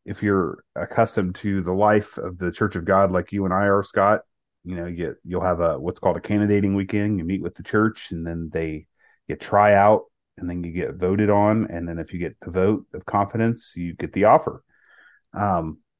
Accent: American